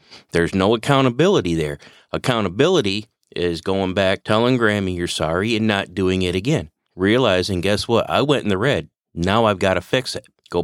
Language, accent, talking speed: English, American, 180 wpm